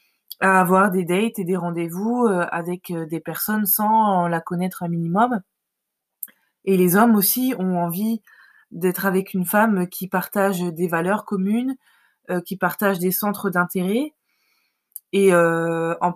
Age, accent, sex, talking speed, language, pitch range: 20-39, French, female, 135 wpm, French, 175-205 Hz